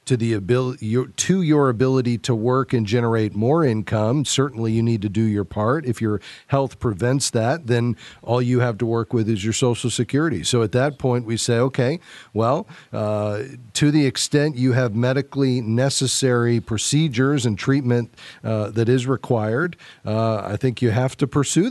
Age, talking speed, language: 40-59, 180 wpm, English